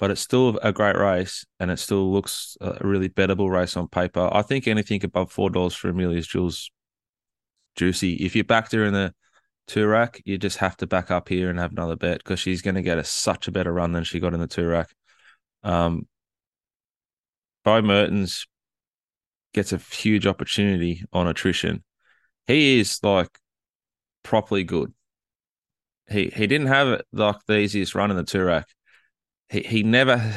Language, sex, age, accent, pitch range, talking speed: English, male, 20-39, Australian, 90-105 Hz, 180 wpm